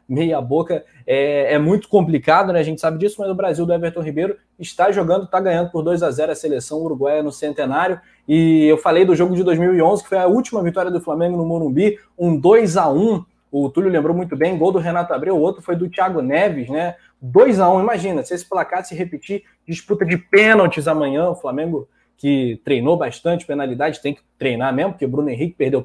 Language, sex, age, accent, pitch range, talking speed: Portuguese, male, 20-39, Brazilian, 155-200 Hz, 215 wpm